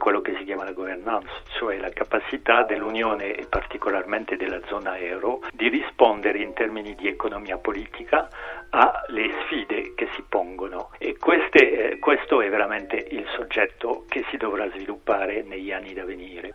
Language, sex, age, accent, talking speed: Italian, male, 60-79, native, 150 wpm